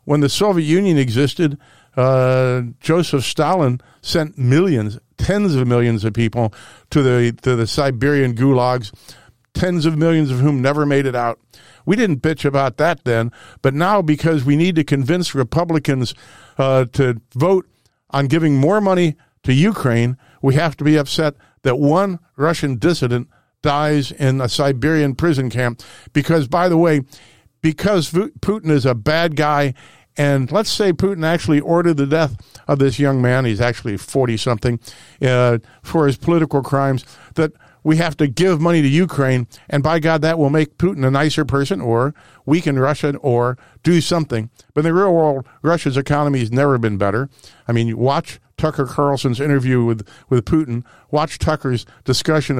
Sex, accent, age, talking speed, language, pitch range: male, American, 50-69, 165 wpm, English, 125-160 Hz